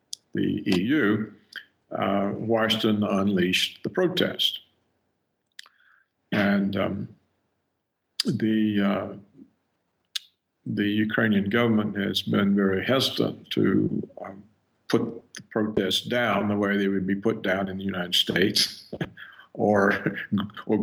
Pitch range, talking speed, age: 100-115 Hz, 105 wpm, 50-69